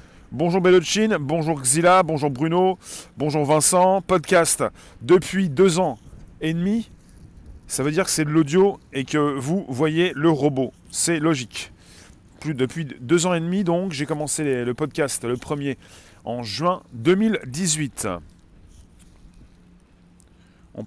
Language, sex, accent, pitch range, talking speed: French, male, French, 115-170 Hz, 135 wpm